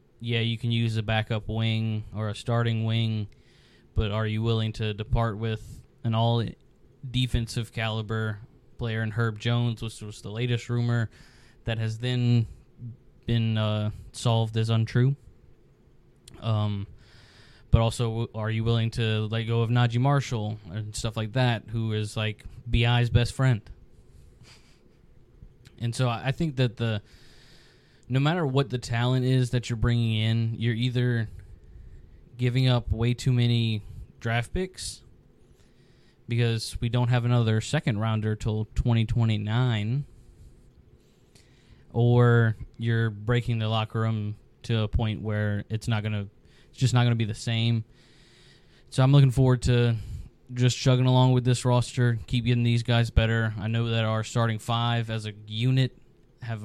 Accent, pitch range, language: American, 110-120 Hz, English